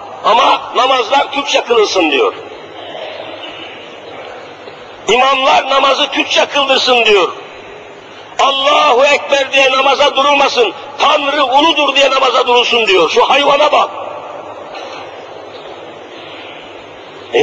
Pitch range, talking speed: 255-305 Hz, 85 wpm